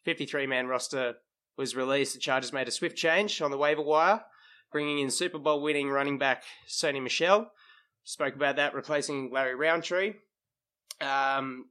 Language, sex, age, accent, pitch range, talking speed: English, male, 20-39, Australian, 120-145 Hz, 150 wpm